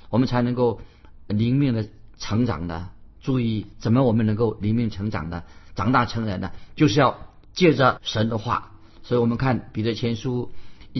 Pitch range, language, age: 105-140 Hz, Chinese, 50-69